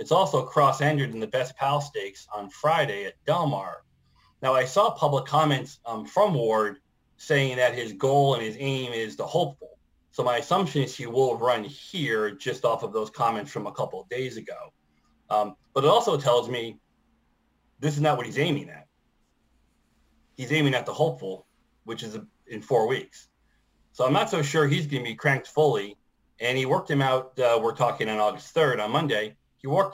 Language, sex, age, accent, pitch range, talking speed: English, male, 30-49, American, 115-150 Hz, 200 wpm